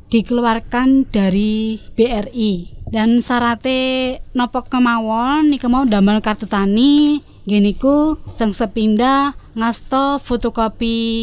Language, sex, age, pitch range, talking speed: Indonesian, female, 20-39, 220-270 Hz, 90 wpm